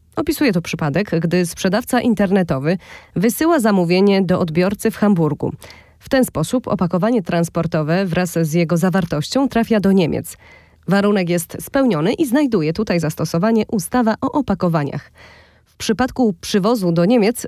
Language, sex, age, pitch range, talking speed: Polish, female, 20-39, 170-230 Hz, 135 wpm